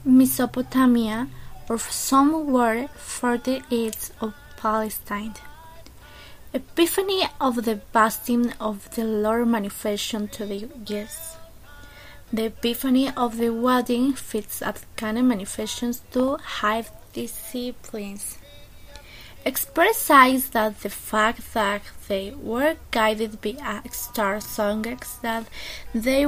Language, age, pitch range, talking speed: English, 20-39, 215-250 Hz, 100 wpm